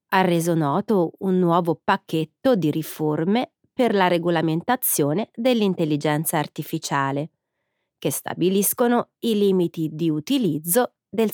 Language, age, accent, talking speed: Italian, 30-49, native, 105 wpm